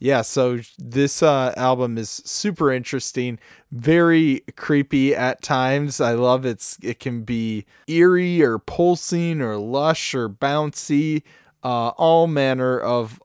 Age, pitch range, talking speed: 20-39, 115-140 Hz, 130 wpm